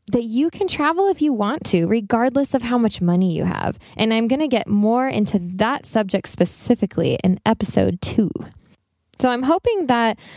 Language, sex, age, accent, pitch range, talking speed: English, female, 10-29, American, 190-235 Hz, 180 wpm